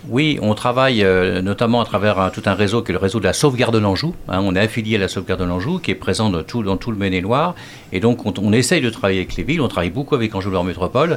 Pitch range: 95-125 Hz